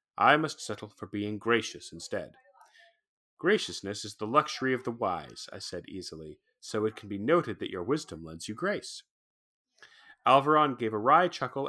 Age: 30-49